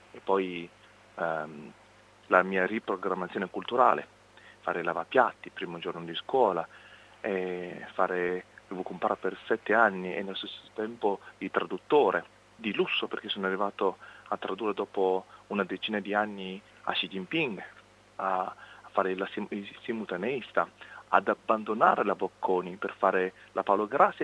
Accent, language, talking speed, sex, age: native, Italian, 140 wpm, male, 30-49